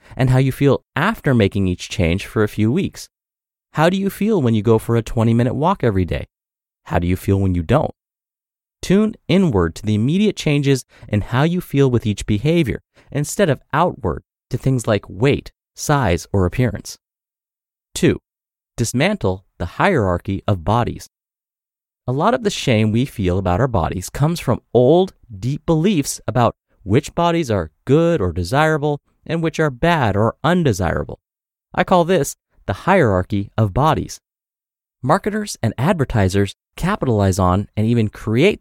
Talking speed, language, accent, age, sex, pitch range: 160 wpm, English, American, 30-49, male, 100-155 Hz